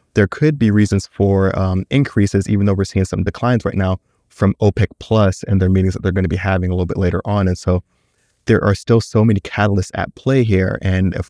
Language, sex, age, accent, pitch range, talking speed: English, male, 30-49, American, 95-105 Hz, 240 wpm